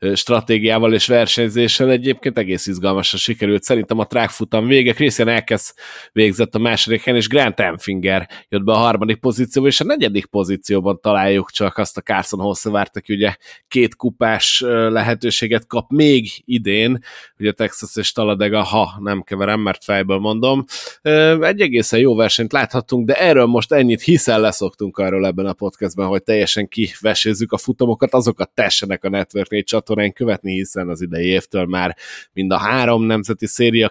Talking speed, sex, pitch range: 150 wpm, male, 100-125 Hz